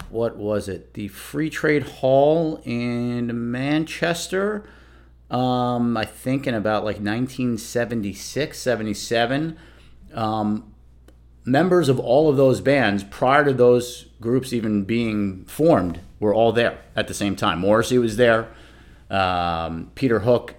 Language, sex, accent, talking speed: English, male, American, 130 wpm